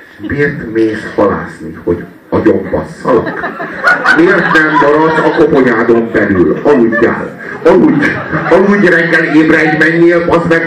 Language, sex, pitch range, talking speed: Hungarian, male, 145-175 Hz, 110 wpm